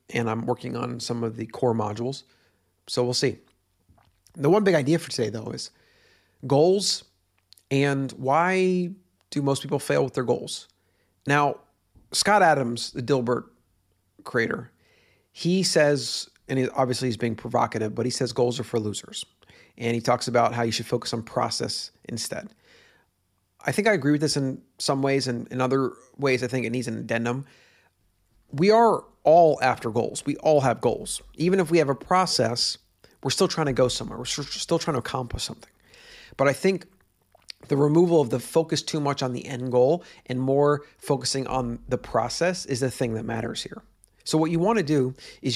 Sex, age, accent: male, 40-59, American